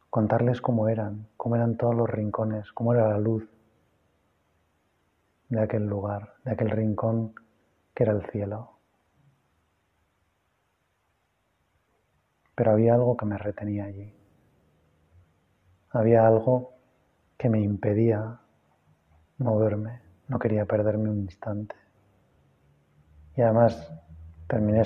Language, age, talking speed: Spanish, 30-49, 105 wpm